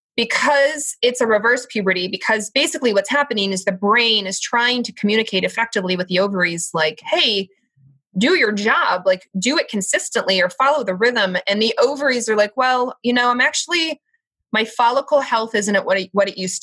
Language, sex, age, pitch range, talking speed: English, female, 20-39, 180-235 Hz, 190 wpm